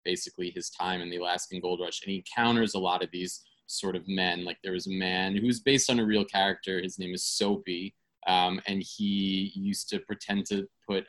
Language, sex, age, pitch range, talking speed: English, male, 20-39, 90-110 Hz, 225 wpm